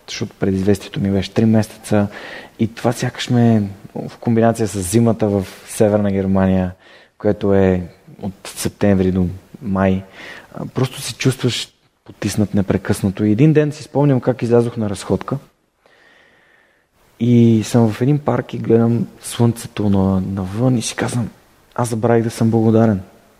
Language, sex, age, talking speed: Bulgarian, male, 20-39, 140 wpm